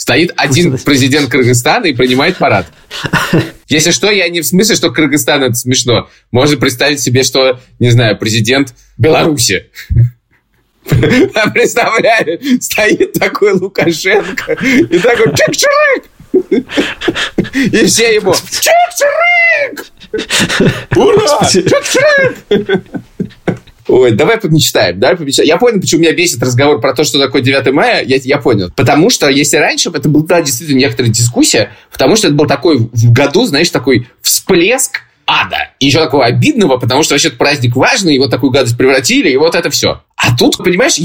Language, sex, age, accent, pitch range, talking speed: Russian, male, 20-39, native, 130-195 Hz, 145 wpm